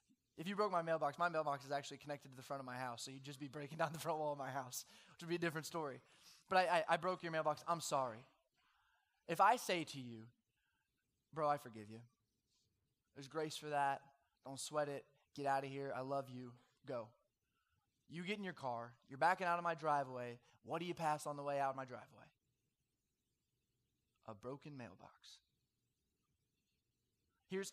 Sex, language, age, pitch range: male, English, 20-39, 135-180 Hz